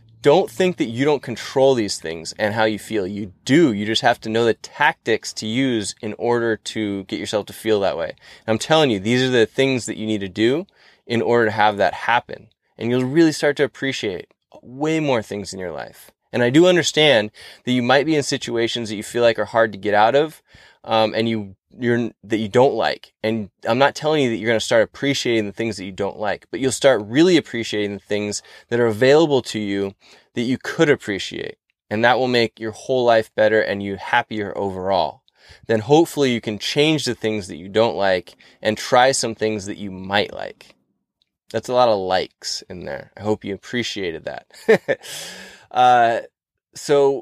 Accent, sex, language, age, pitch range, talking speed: American, male, English, 20-39, 105-130 Hz, 215 wpm